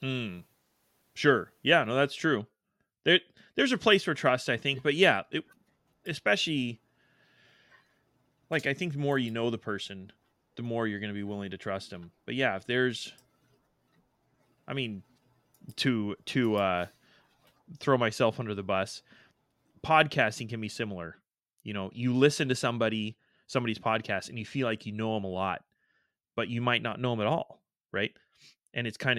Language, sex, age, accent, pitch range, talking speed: English, male, 20-39, American, 105-120 Hz, 175 wpm